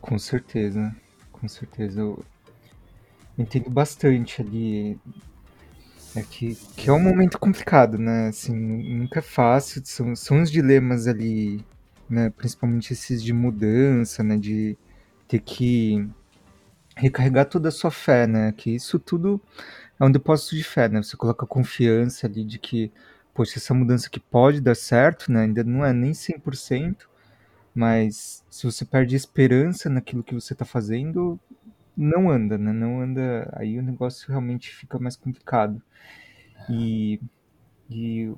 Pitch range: 115-135 Hz